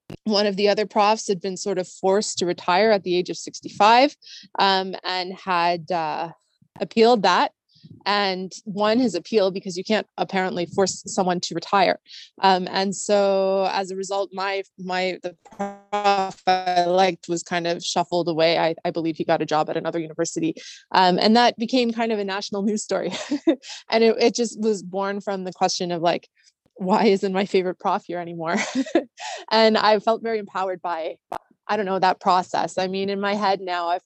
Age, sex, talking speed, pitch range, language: 20-39, female, 190 wpm, 175-210 Hz, English